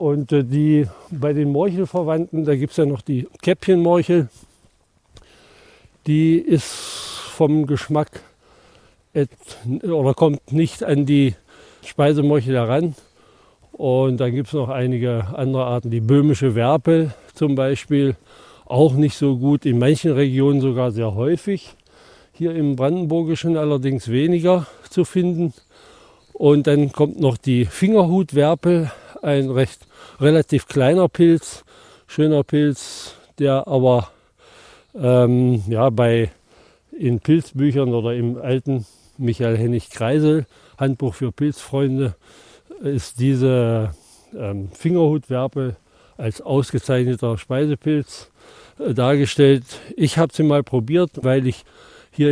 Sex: male